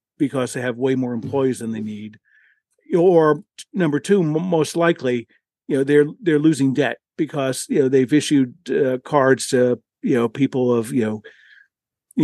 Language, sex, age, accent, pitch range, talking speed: English, male, 50-69, American, 120-150 Hz, 165 wpm